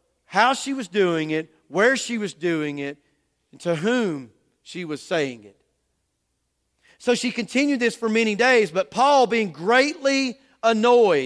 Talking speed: 155 wpm